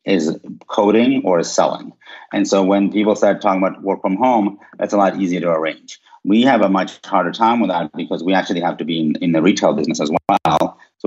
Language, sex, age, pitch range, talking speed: English, male, 30-49, 85-105 Hz, 235 wpm